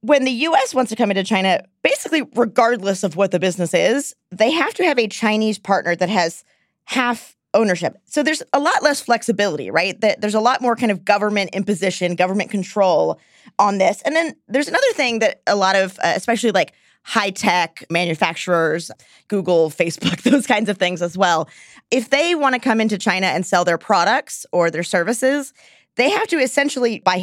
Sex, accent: female, American